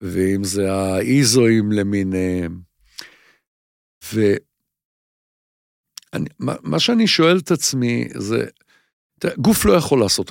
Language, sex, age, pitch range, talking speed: English, male, 50-69, 100-140 Hz, 80 wpm